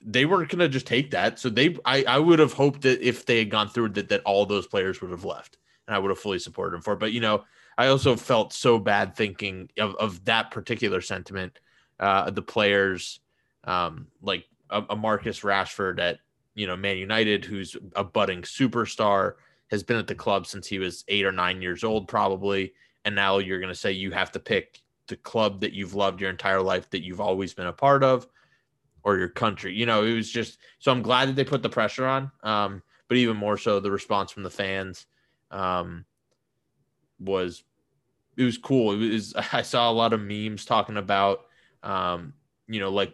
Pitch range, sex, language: 95-120 Hz, male, English